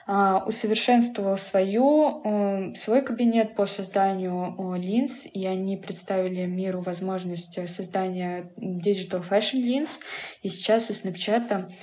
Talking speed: 95 wpm